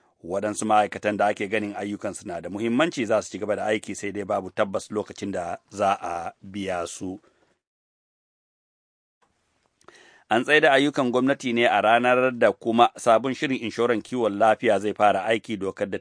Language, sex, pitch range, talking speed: English, male, 105-120 Hz, 130 wpm